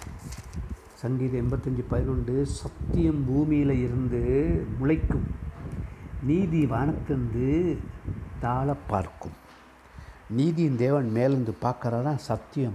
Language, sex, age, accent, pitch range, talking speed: Tamil, male, 60-79, native, 100-135 Hz, 75 wpm